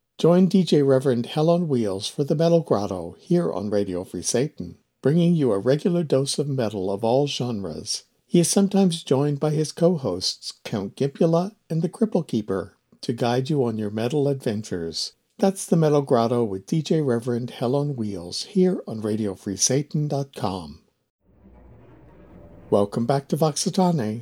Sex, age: male, 60-79